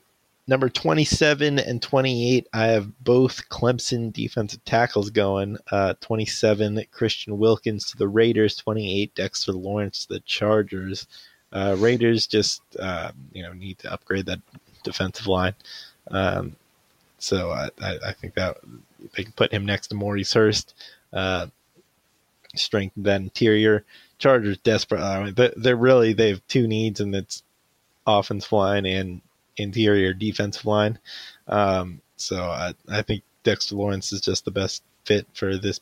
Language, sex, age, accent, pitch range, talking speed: English, male, 20-39, American, 100-115 Hz, 145 wpm